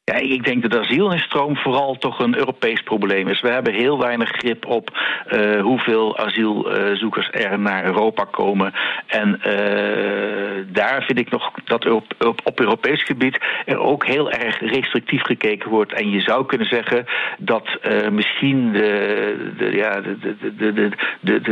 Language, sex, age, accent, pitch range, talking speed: Dutch, male, 60-79, Dutch, 110-130 Hz, 145 wpm